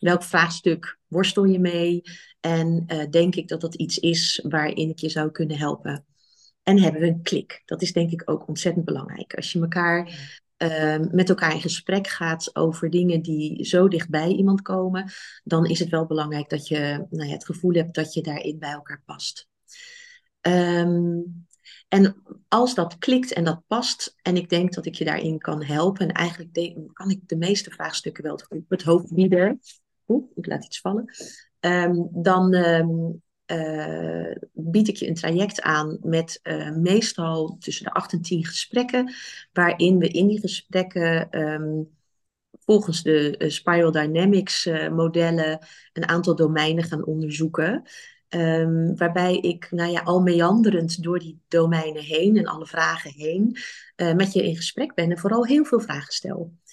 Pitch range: 160-185 Hz